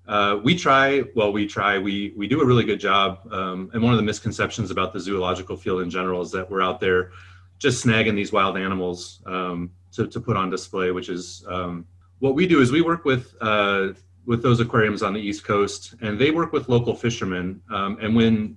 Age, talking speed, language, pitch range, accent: 30-49, 220 wpm, English, 90-115 Hz, American